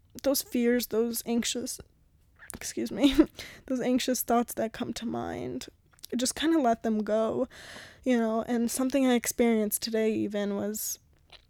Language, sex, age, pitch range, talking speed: English, female, 10-29, 210-245 Hz, 145 wpm